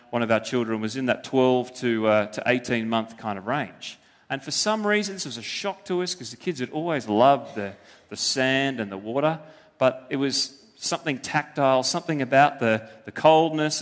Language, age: English, 30-49